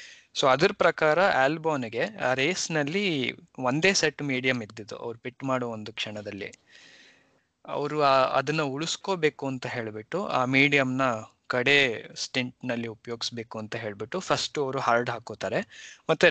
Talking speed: 125 wpm